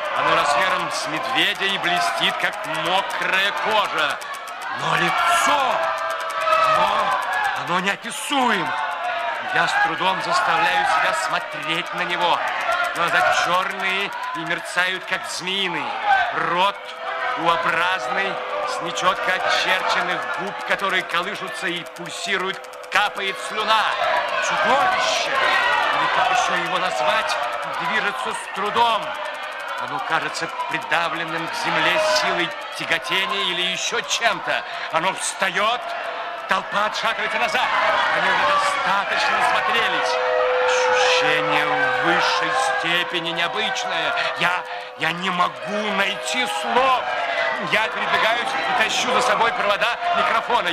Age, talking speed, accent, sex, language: 50-69, 100 wpm, native, male, Russian